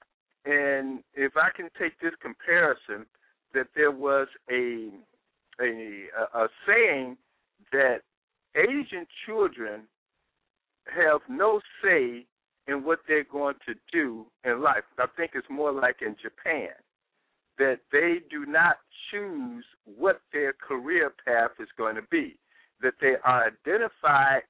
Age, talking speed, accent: 60-79, 125 wpm, American